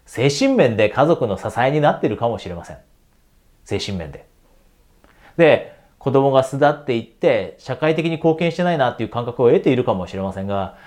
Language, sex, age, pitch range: Japanese, male, 30-49, 110-165 Hz